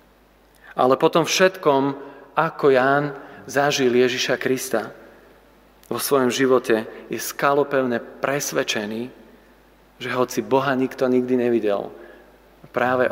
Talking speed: 95 wpm